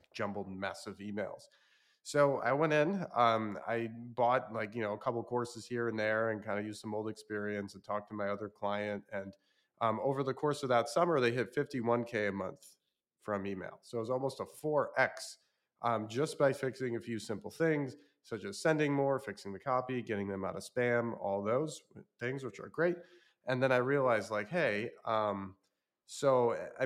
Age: 30-49